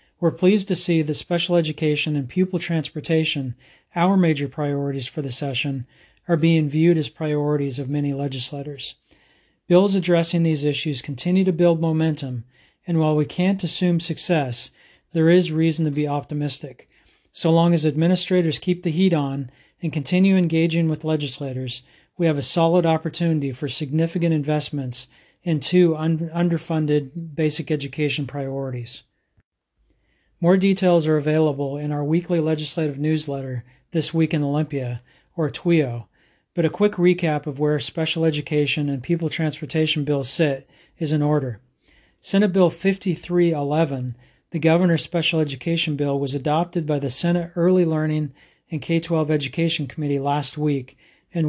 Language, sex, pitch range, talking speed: English, male, 145-170 Hz, 145 wpm